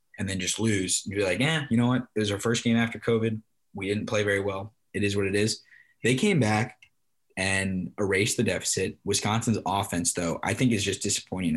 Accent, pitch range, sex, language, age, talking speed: American, 100-120 Hz, male, English, 20-39, 225 wpm